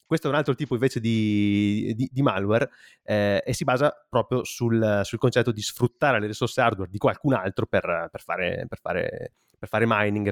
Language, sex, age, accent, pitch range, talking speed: Italian, male, 30-49, native, 105-130 Hz, 200 wpm